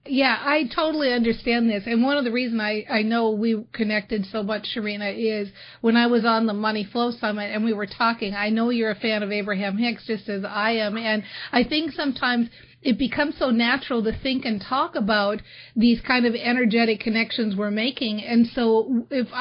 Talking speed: 205 wpm